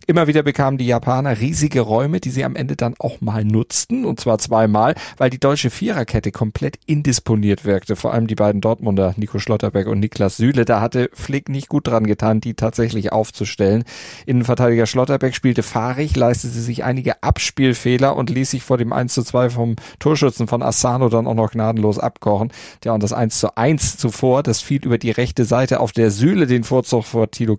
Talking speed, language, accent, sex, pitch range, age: 185 wpm, German, German, male, 110-130 Hz, 40-59